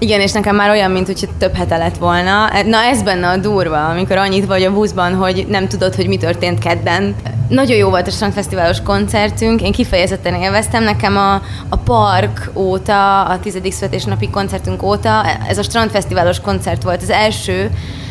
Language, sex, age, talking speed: Hungarian, female, 20-39, 180 wpm